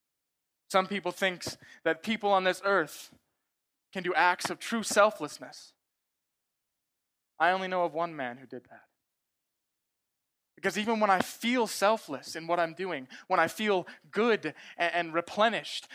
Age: 20-39